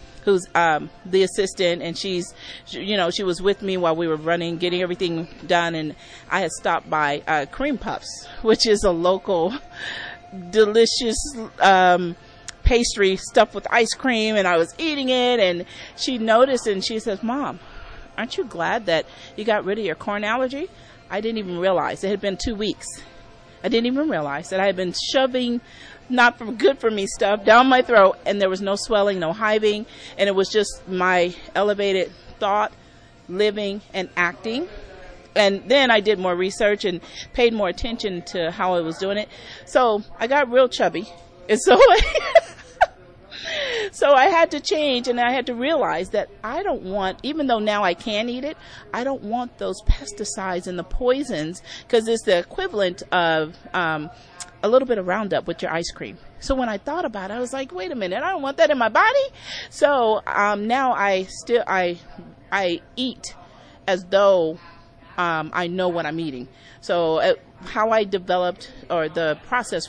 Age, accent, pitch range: 40-59, American, 180-240 Hz